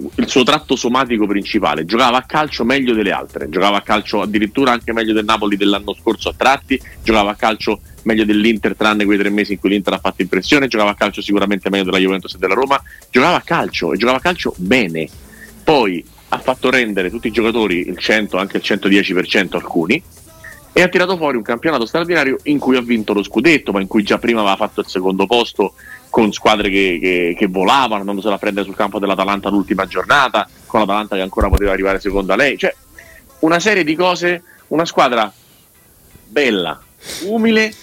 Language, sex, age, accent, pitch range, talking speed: Italian, male, 30-49, native, 100-130 Hz, 195 wpm